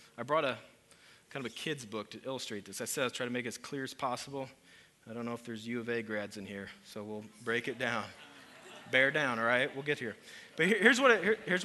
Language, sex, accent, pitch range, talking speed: English, male, American, 120-145 Hz, 245 wpm